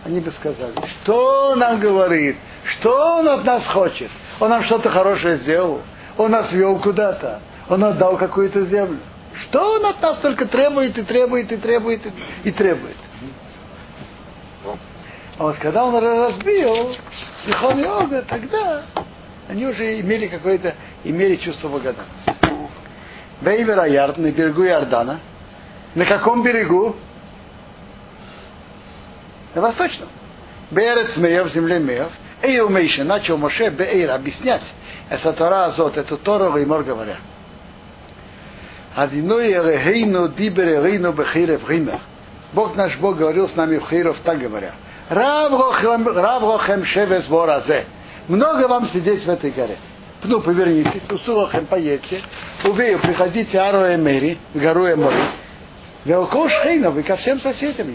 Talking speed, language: 130 wpm, Russian